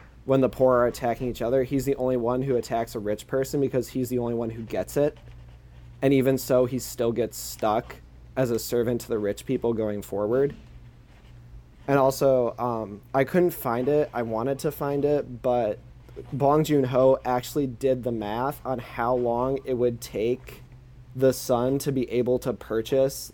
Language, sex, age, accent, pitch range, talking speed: English, male, 20-39, American, 115-135 Hz, 190 wpm